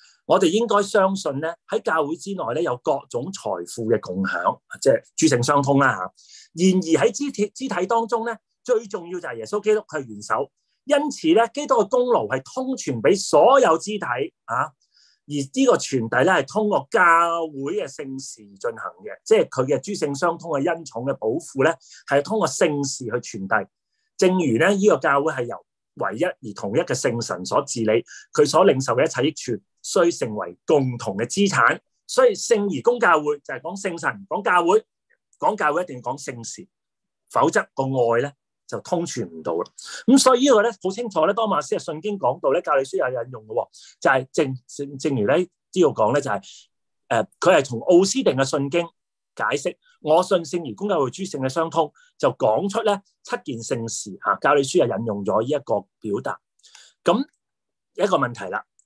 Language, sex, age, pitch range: English, male, 30-49, 140-235 Hz